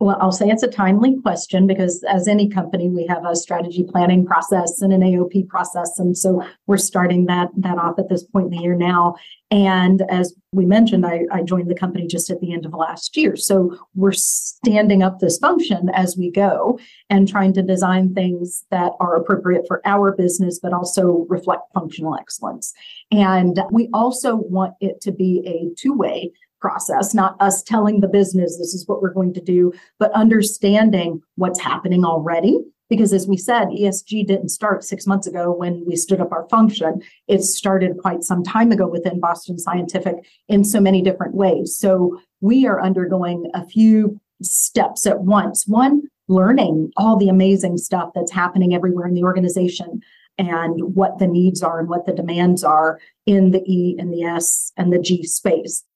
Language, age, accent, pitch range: English, 40-59, American, 175-200 Hz